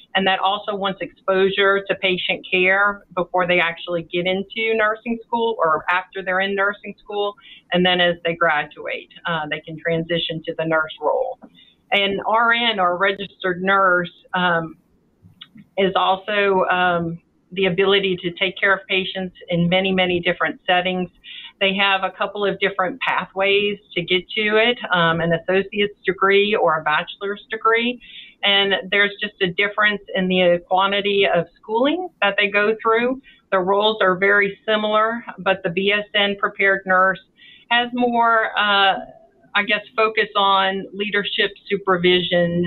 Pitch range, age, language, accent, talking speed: 180-205 Hz, 40-59, English, American, 150 wpm